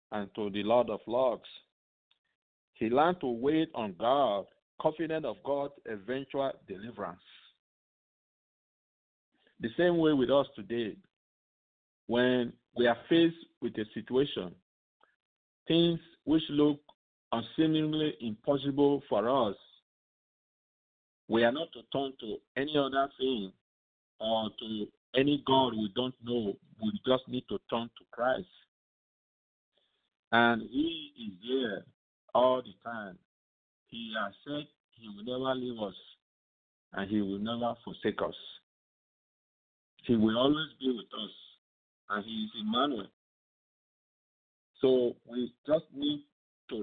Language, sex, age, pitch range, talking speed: English, male, 50-69, 110-150 Hz, 125 wpm